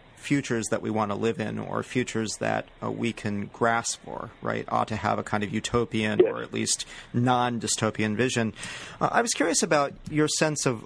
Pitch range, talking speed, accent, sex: 105-125 Hz, 200 wpm, American, male